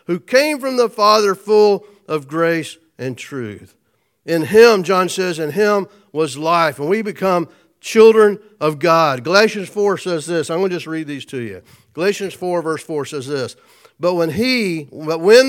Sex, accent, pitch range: male, American, 155-220 Hz